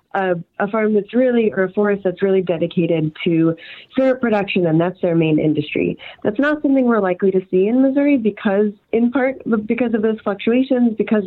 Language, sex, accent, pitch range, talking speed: English, female, American, 180-230 Hz, 190 wpm